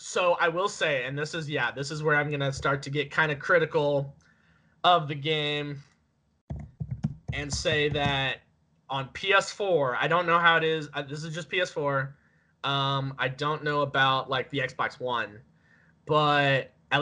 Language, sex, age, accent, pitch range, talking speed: English, male, 20-39, American, 130-160 Hz, 175 wpm